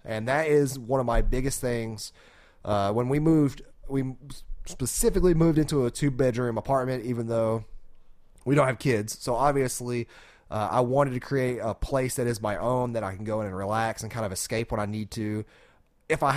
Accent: American